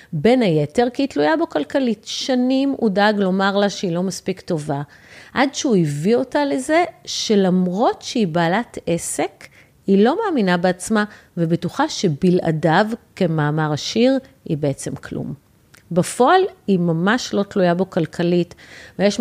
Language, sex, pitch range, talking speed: Hebrew, female, 170-235 Hz, 135 wpm